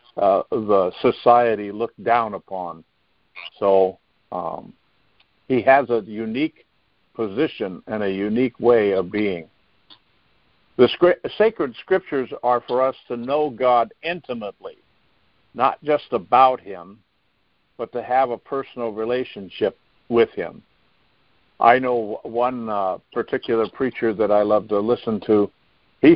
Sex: male